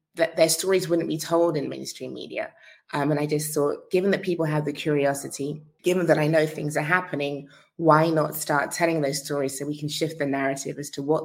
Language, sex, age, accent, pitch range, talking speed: English, female, 20-39, British, 145-165 Hz, 225 wpm